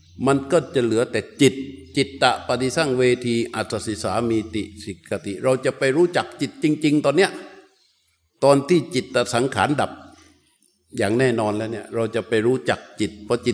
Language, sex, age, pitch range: Thai, male, 60-79, 115-150 Hz